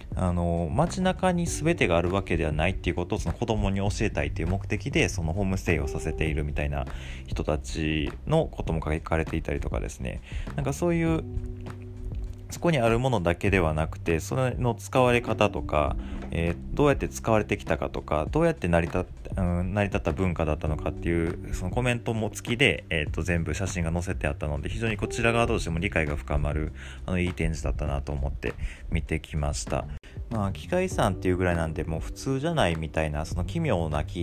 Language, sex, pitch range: Japanese, male, 75-105 Hz